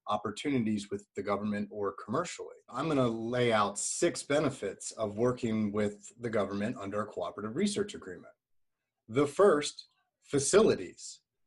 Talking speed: 130 wpm